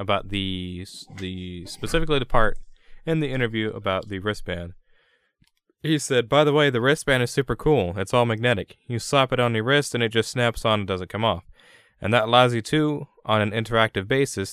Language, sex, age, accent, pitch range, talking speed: English, male, 20-39, American, 90-115 Hz, 200 wpm